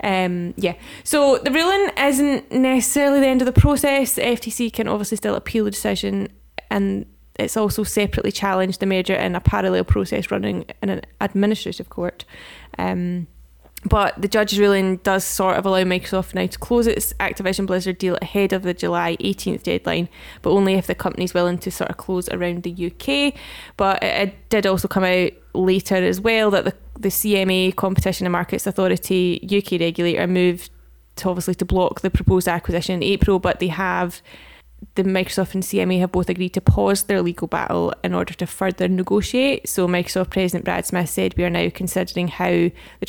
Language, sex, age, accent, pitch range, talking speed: English, female, 10-29, British, 175-200 Hz, 185 wpm